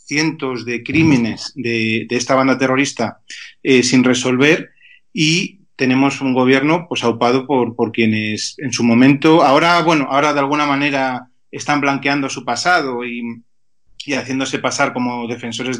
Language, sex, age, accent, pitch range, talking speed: Spanish, male, 30-49, Spanish, 120-145 Hz, 150 wpm